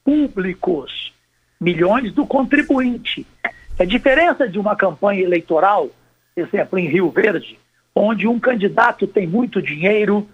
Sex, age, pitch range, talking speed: male, 60-79, 150-230 Hz, 115 wpm